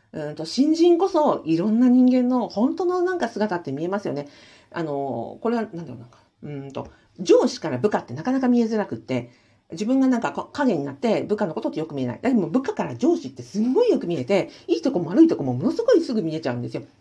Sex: female